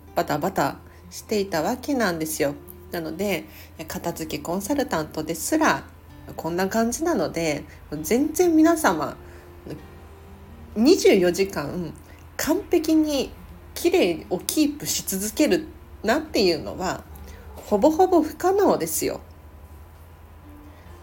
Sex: female